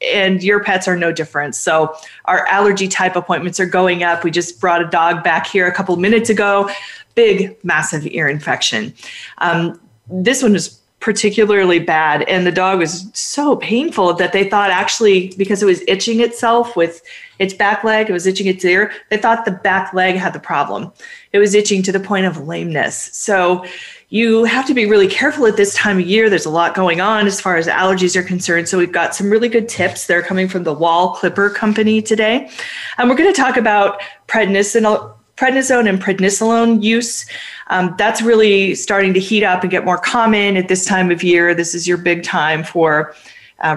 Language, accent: English, American